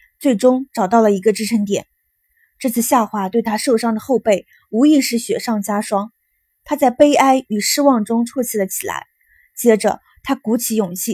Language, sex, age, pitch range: Chinese, female, 20-39, 210-270 Hz